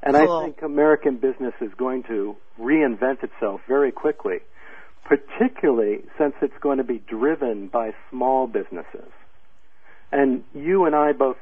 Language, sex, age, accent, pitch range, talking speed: English, male, 50-69, American, 125-155 Hz, 140 wpm